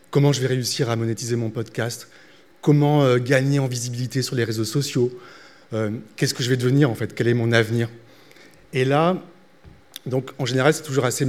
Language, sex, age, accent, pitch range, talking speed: French, male, 30-49, French, 115-140 Hz, 190 wpm